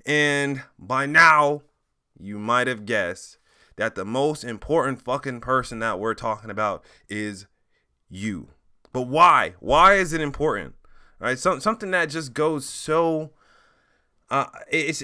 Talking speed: 135 wpm